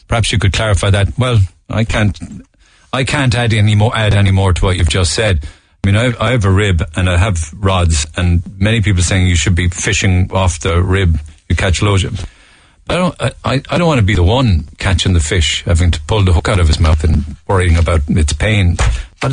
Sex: male